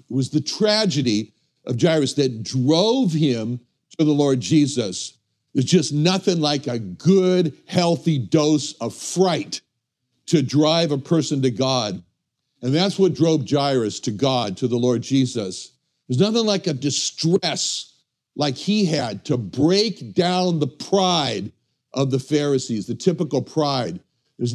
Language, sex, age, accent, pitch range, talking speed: English, male, 60-79, American, 125-175 Hz, 145 wpm